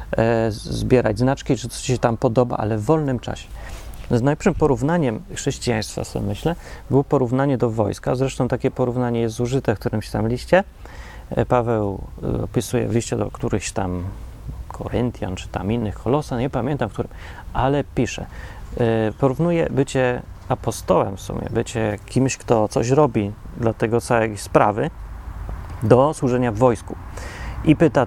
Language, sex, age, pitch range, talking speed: Polish, male, 30-49, 105-135 Hz, 140 wpm